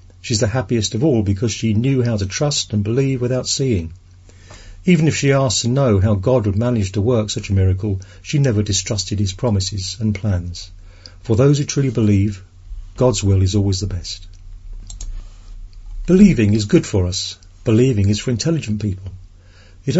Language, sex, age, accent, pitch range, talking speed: English, male, 50-69, British, 95-130 Hz, 175 wpm